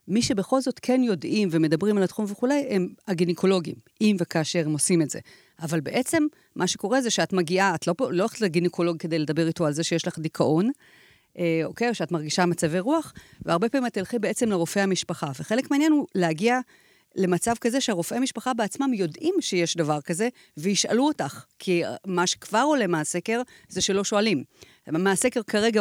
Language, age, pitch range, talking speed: Hebrew, 40-59, 175-235 Hz, 175 wpm